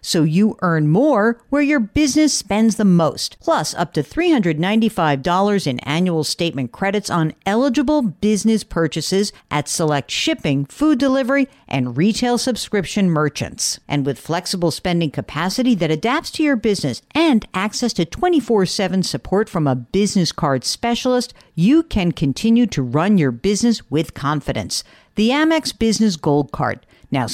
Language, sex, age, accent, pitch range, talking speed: English, female, 50-69, American, 145-230 Hz, 145 wpm